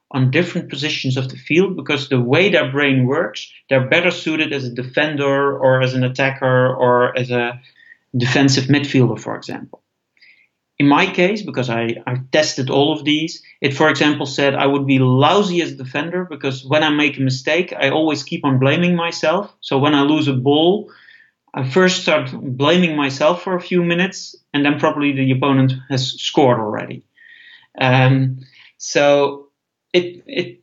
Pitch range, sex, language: 130-155 Hz, male, English